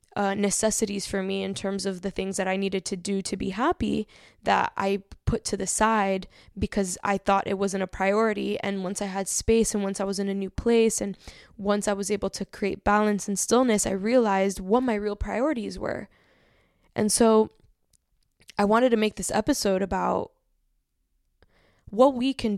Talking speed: 190 wpm